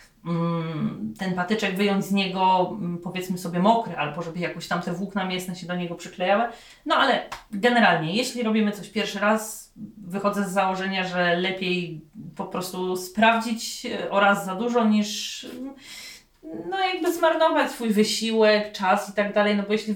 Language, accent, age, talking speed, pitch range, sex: Polish, native, 30-49, 155 wpm, 180-220 Hz, female